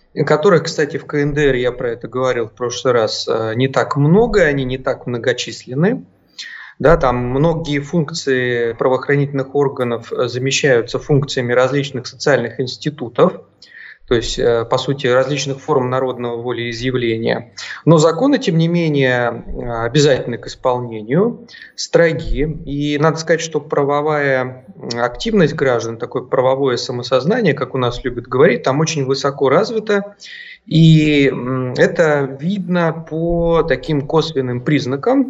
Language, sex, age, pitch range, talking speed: Russian, male, 30-49, 125-160 Hz, 120 wpm